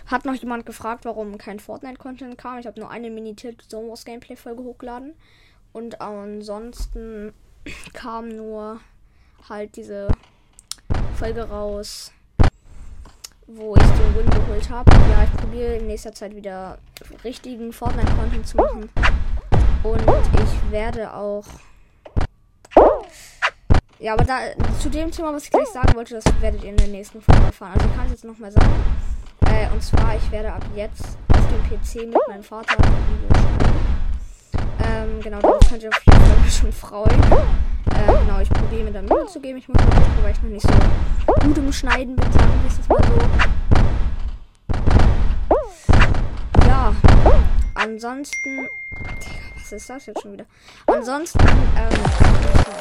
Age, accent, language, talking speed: 10-29, German, German, 150 wpm